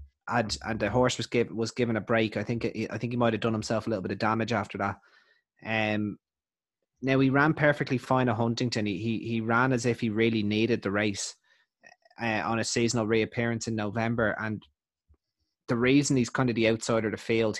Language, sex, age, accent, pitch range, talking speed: English, male, 20-39, Irish, 110-130 Hz, 220 wpm